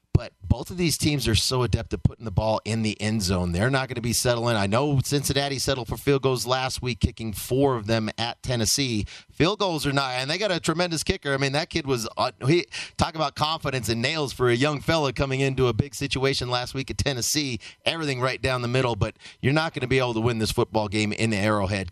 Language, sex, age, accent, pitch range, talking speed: English, male, 30-49, American, 110-130 Hz, 250 wpm